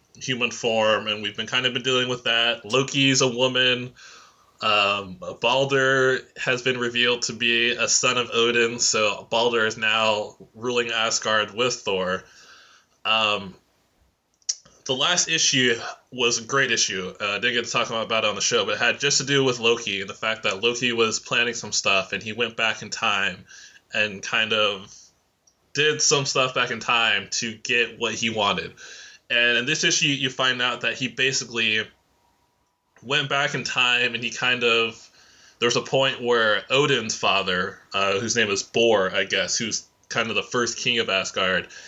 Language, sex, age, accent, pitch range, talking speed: English, male, 20-39, American, 110-130 Hz, 185 wpm